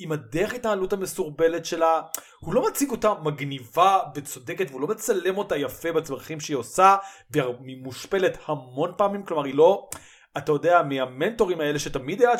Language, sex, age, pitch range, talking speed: Hebrew, male, 30-49, 145-200 Hz, 155 wpm